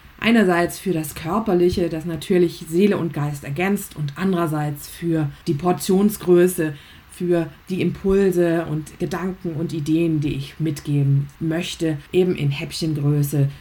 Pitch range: 160-190 Hz